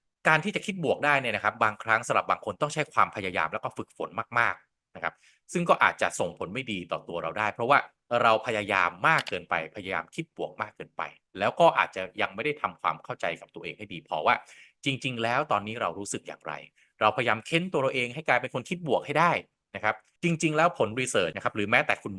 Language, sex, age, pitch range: Thai, male, 20-39, 105-150 Hz